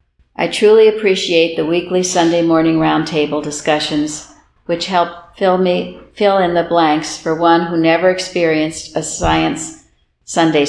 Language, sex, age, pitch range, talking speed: English, female, 60-79, 150-180 Hz, 140 wpm